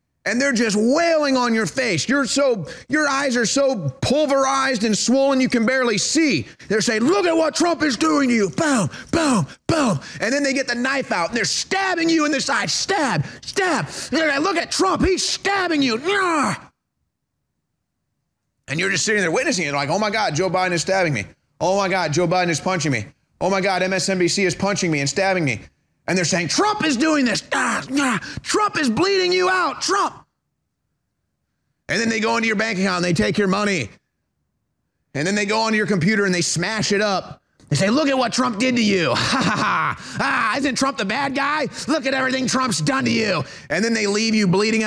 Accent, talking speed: American, 215 wpm